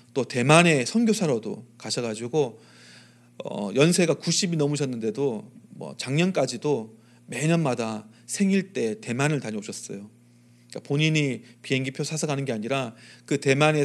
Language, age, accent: Korean, 30-49, native